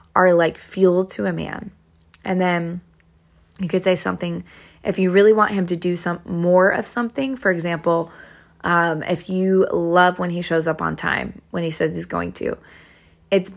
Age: 20-39